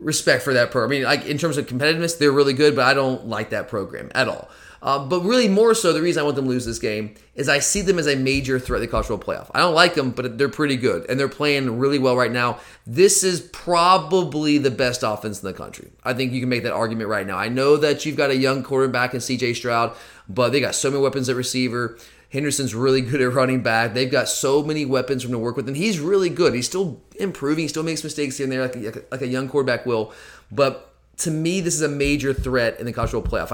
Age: 30-49